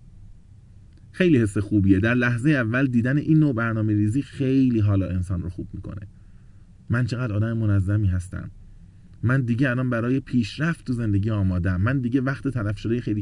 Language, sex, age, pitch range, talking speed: Persian, male, 30-49, 95-140 Hz, 165 wpm